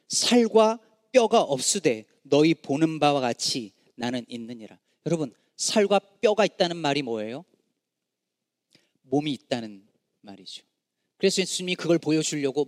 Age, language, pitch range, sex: 40-59, Korean, 130-180 Hz, male